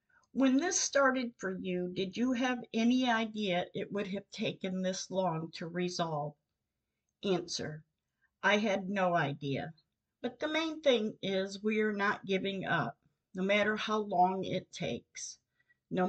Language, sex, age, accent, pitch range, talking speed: English, female, 50-69, American, 180-245 Hz, 150 wpm